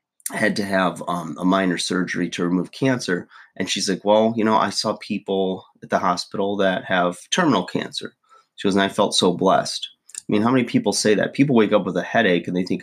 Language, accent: English, American